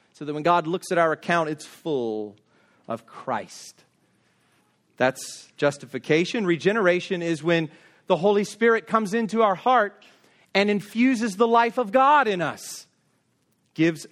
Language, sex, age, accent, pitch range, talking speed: English, male, 40-59, American, 170-235 Hz, 140 wpm